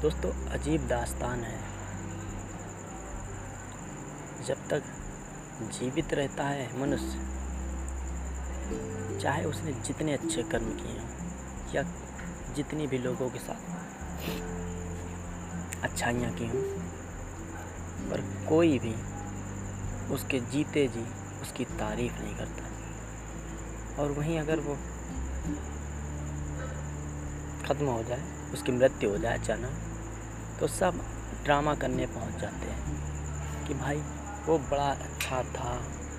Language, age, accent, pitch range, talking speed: Hindi, 30-49, native, 75-120 Hz, 100 wpm